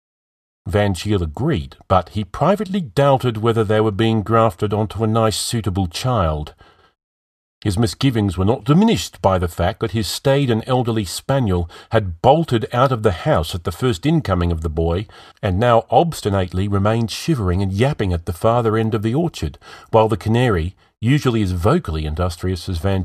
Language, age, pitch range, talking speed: English, 40-59, 90-120 Hz, 175 wpm